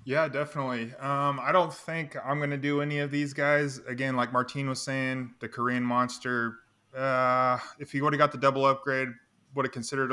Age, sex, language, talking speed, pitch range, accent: 20-39, male, English, 200 wpm, 115-140 Hz, American